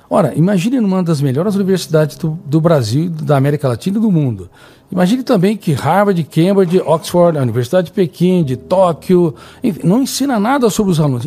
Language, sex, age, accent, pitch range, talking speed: Portuguese, male, 60-79, Brazilian, 125-175 Hz, 180 wpm